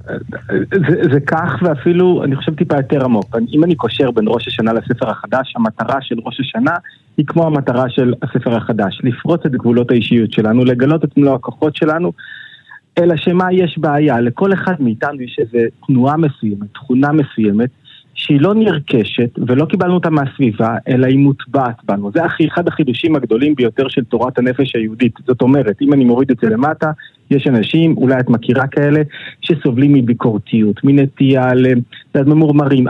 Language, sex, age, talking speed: Hebrew, male, 30-49, 160 wpm